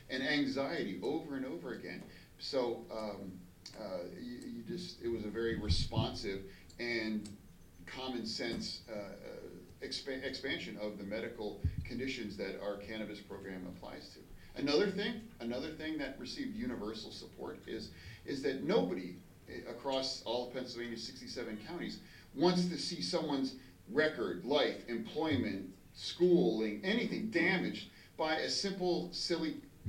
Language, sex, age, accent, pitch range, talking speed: English, male, 40-59, American, 105-135 Hz, 130 wpm